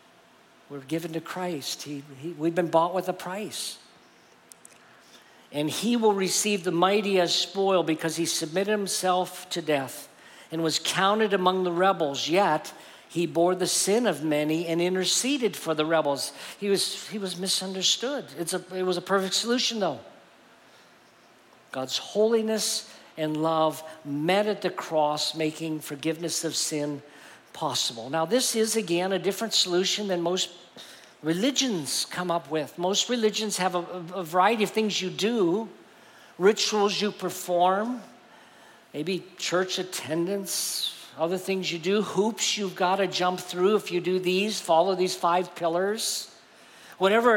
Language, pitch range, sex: English, 165-200 Hz, male